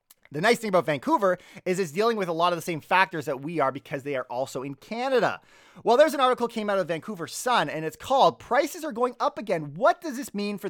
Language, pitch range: English, 155-230 Hz